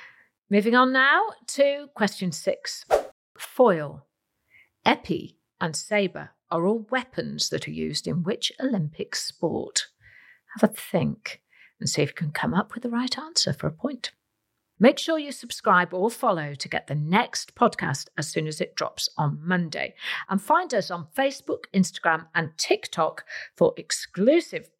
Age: 50-69